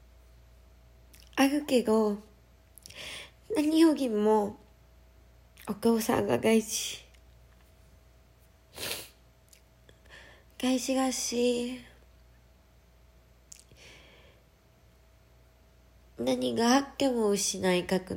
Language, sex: Japanese, female